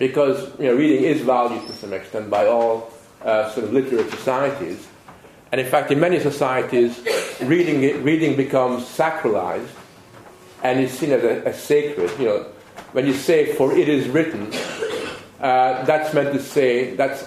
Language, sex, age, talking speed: English, male, 40-59, 165 wpm